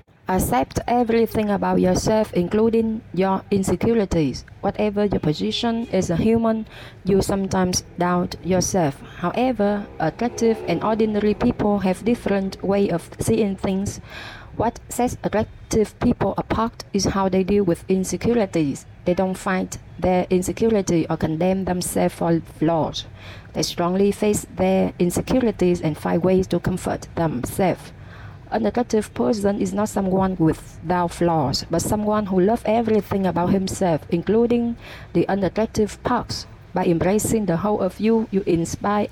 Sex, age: female, 20-39